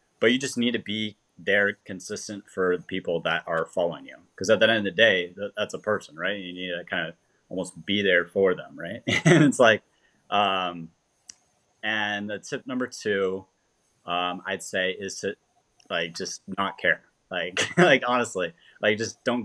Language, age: English, 30-49